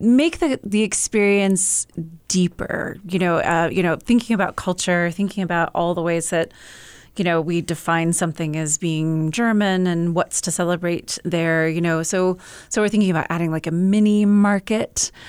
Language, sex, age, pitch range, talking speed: English, female, 30-49, 165-200 Hz, 175 wpm